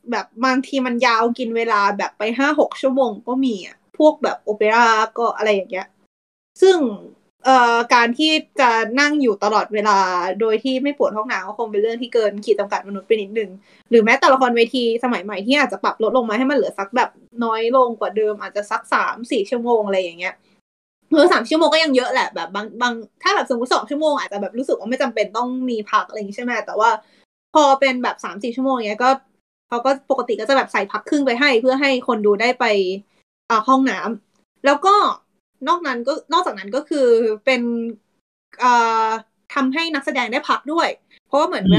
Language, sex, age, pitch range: Thai, female, 20-39, 215-265 Hz